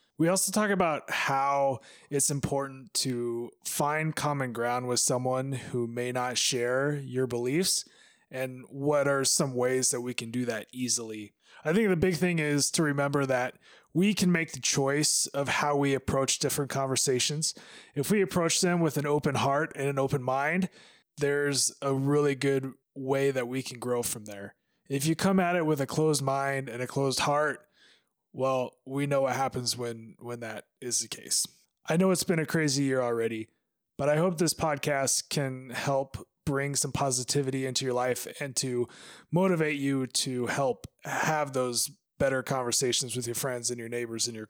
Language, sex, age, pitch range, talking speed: English, male, 20-39, 125-160 Hz, 185 wpm